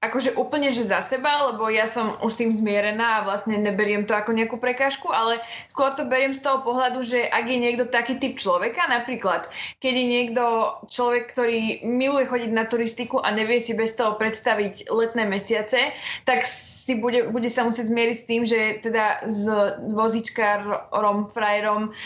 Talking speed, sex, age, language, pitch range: 175 wpm, female, 20-39, Slovak, 210-245 Hz